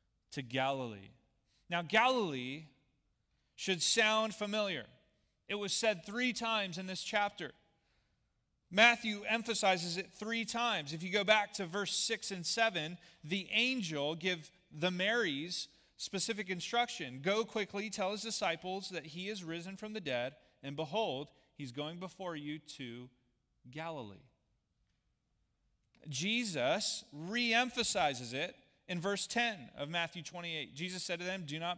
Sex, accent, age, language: male, American, 30-49, English